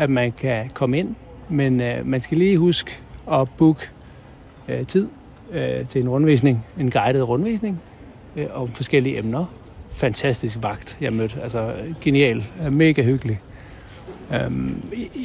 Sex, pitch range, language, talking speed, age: male, 120-160 Hz, Danish, 140 wpm, 60-79